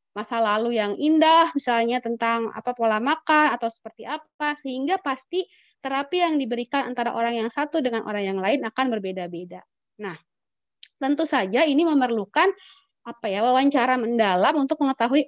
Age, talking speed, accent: 20-39, 150 wpm, native